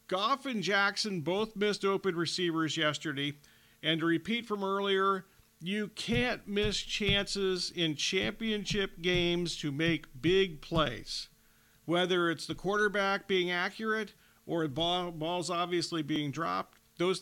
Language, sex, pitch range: English, male, 165-200 Hz